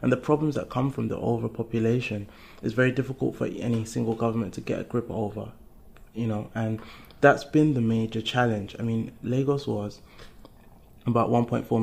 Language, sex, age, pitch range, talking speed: English, male, 20-39, 110-120 Hz, 170 wpm